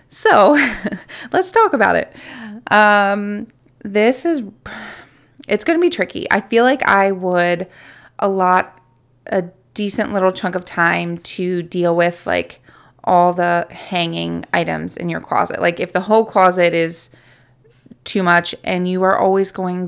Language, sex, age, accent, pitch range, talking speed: English, female, 20-39, American, 175-205 Hz, 150 wpm